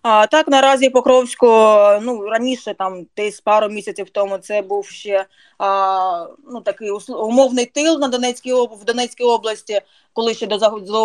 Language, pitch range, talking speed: Ukrainian, 195-225 Hz, 140 wpm